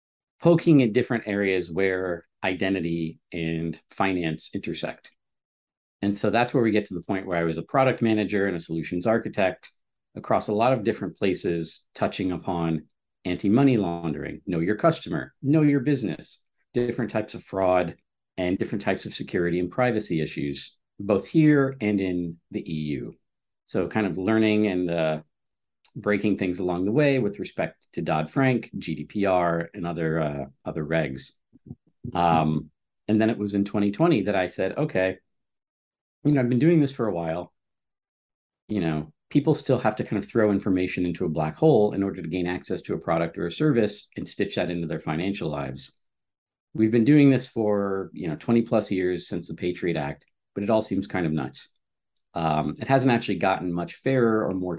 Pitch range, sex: 85-110 Hz, male